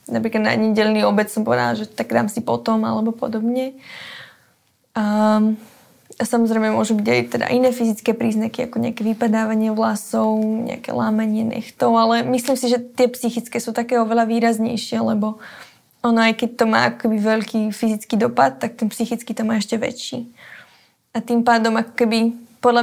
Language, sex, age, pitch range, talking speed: Slovak, female, 20-39, 220-235 Hz, 165 wpm